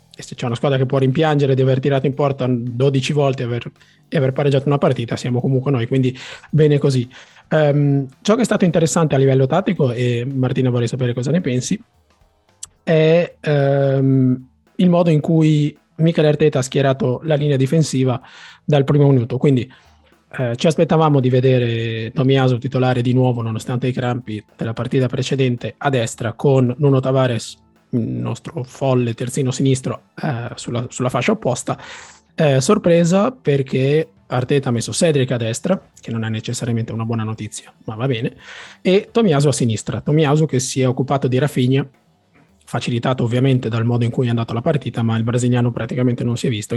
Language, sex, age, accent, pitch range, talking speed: Italian, male, 20-39, native, 120-145 Hz, 175 wpm